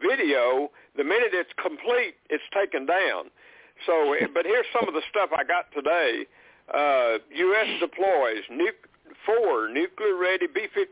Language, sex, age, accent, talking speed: English, male, 60-79, American, 135 wpm